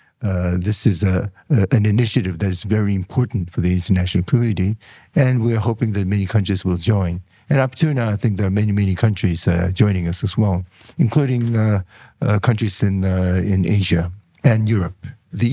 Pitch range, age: 95-115 Hz, 60-79